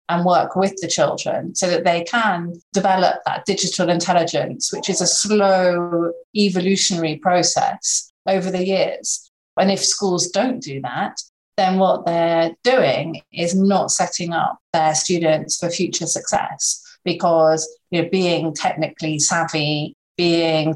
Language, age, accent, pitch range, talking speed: English, 30-49, British, 155-190 Hz, 135 wpm